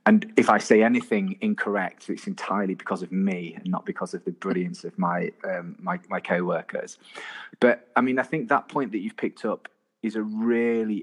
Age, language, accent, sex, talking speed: 30-49, English, British, male, 200 wpm